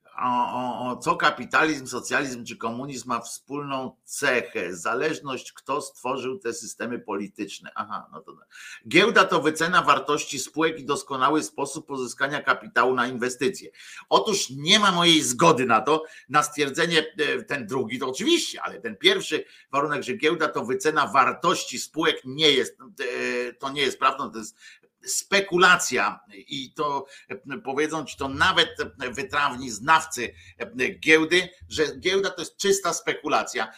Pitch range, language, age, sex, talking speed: 115-170 Hz, Polish, 50-69, male, 145 wpm